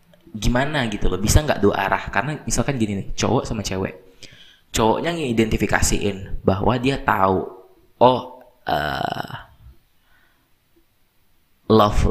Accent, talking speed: native, 110 wpm